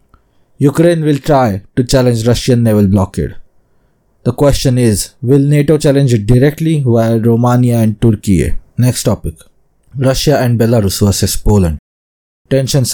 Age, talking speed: 20-39, 130 wpm